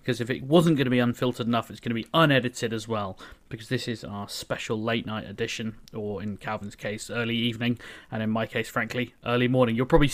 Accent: British